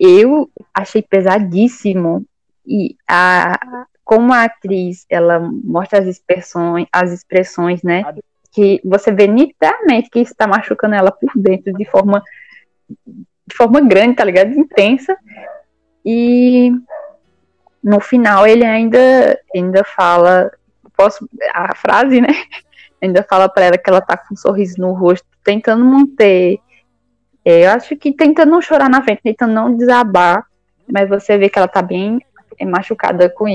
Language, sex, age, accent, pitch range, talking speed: Portuguese, female, 10-29, Brazilian, 190-265 Hz, 140 wpm